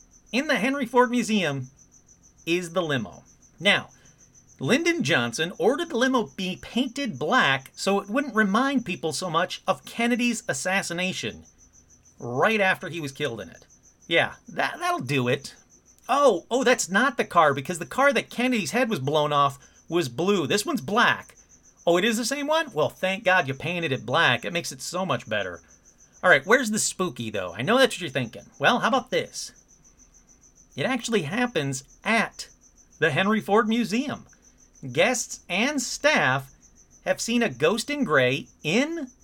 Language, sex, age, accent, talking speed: English, male, 40-59, American, 170 wpm